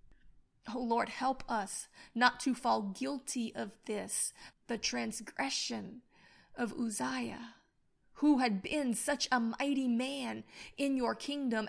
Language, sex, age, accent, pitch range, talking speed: English, female, 30-49, American, 230-270 Hz, 125 wpm